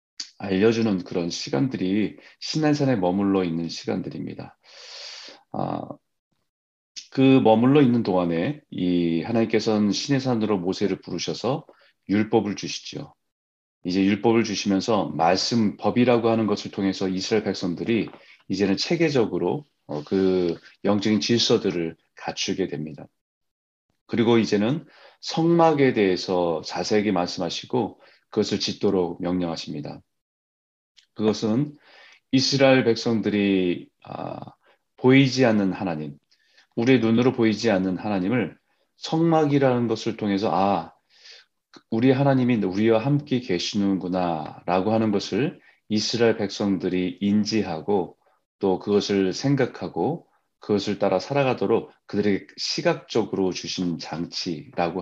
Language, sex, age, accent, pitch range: Korean, male, 30-49, native, 95-120 Hz